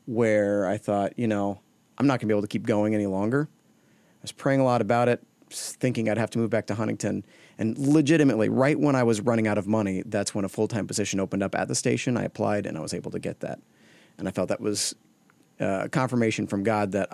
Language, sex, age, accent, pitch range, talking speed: English, male, 30-49, American, 100-130 Hz, 245 wpm